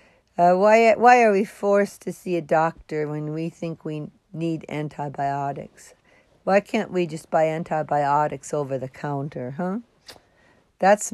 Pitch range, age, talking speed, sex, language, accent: 155-210 Hz, 60-79, 145 wpm, female, English, American